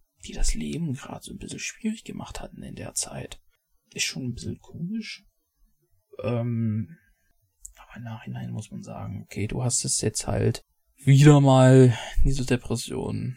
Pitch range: 105-150 Hz